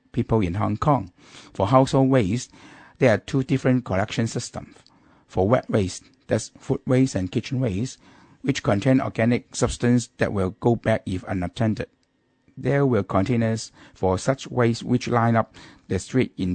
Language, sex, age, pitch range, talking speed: English, male, 60-79, 105-130 Hz, 160 wpm